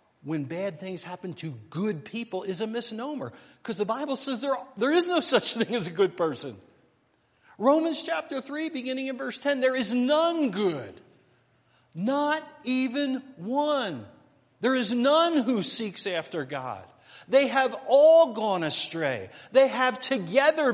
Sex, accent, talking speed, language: male, American, 155 wpm, English